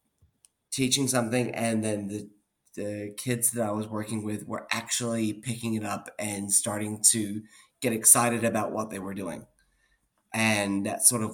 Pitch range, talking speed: 105-120 Hz, 165 wpm